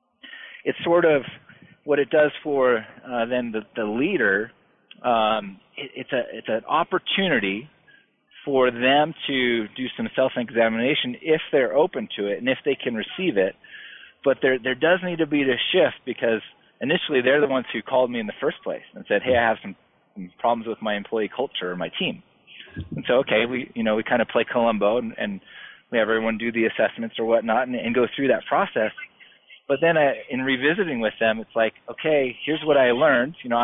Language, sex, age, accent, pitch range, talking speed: English, male, 30-49, American, 115-150 Hz, 205 wpm